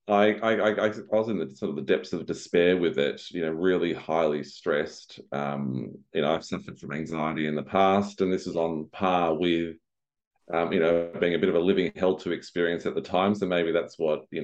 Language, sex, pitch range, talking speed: English, male, 80-100 Hz, 235 wpm